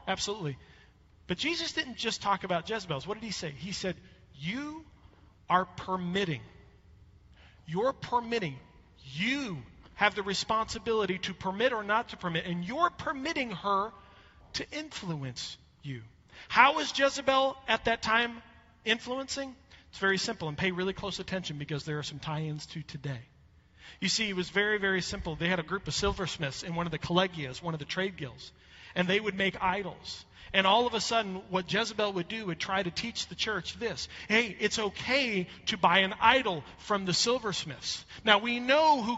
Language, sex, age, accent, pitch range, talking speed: English, male, 40-59, American, 175-250 Hz, 180 wpm